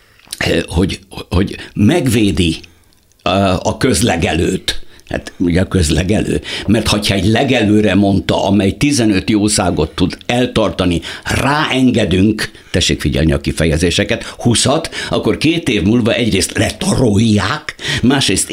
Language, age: Hungarian, 60-79